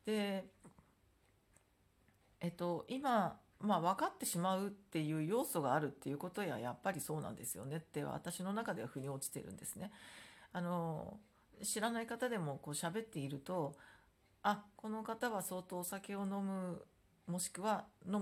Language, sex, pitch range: Japanese, female, 150-205 Hz